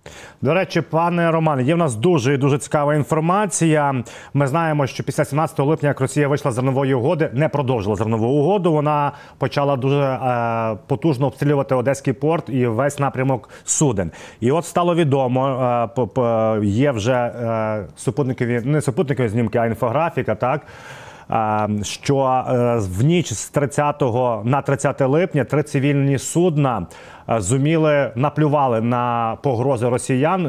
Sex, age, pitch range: male, 30-49, 120-150 Hz